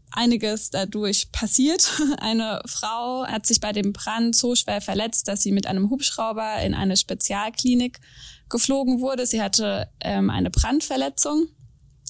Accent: German